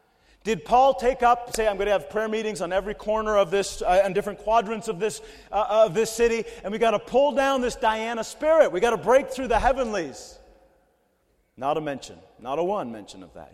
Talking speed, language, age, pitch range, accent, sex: 225 wpm, English, 40-59, 175-235 Hz, American, male